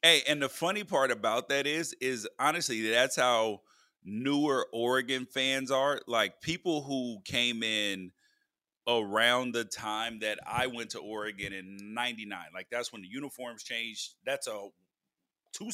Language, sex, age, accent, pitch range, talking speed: English, male, 30-49, American, 115-160 Hz, 155 wpm